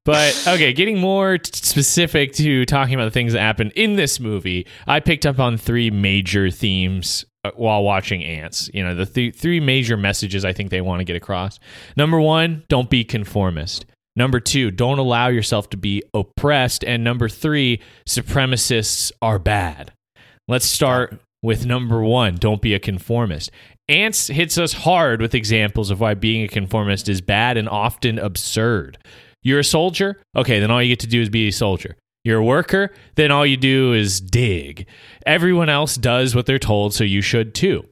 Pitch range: 105-135 Hz